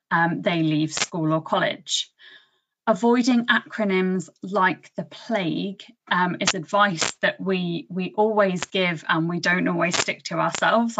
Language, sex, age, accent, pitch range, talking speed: English, female, 20-39, British, 170-215 Hz, 140 wpm